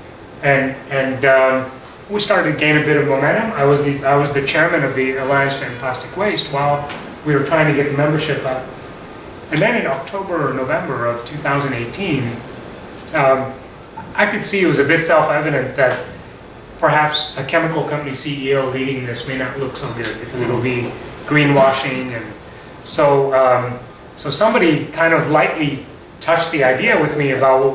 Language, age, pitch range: English, 30-49, 130-150 Hz